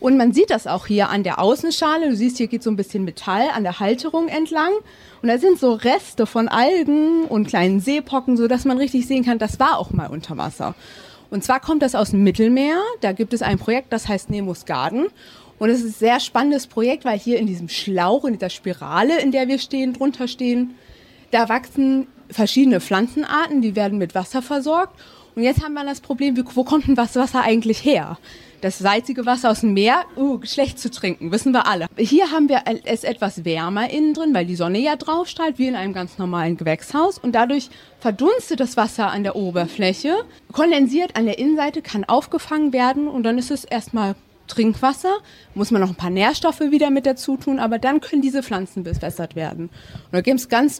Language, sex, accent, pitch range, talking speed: German, female, German, 210-280 Hz, 210 wpm